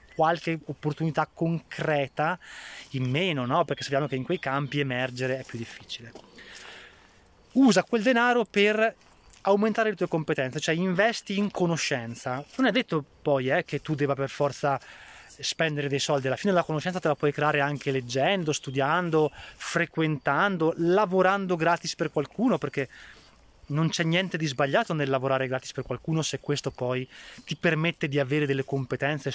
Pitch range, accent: 135-180 Hz, native